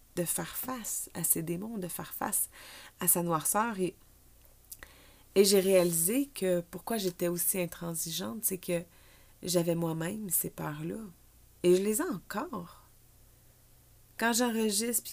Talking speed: 135 wpm